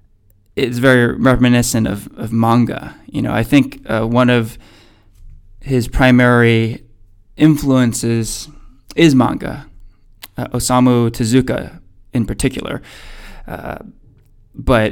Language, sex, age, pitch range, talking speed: English, male, 20-39, 105-125 Hz, 100 wpm